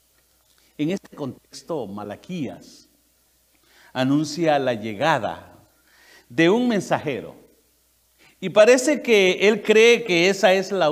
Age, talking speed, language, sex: 50-69, 105 wpm, English, male